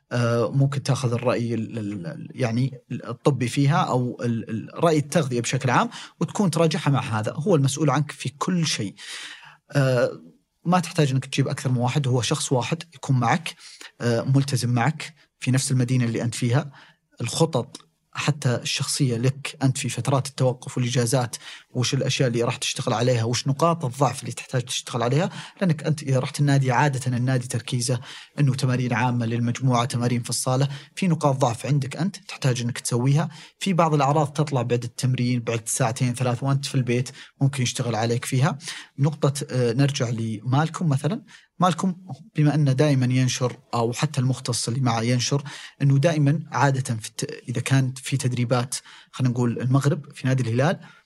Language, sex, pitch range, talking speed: Arabic, male, 125-150 Hz, 155 wpm